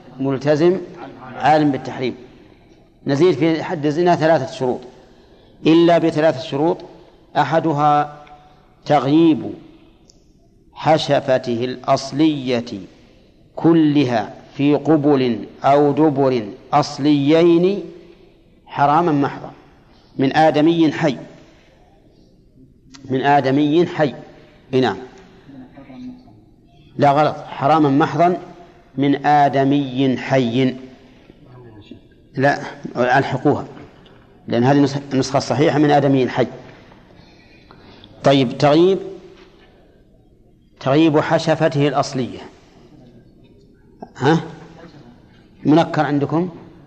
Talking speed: 70 wpm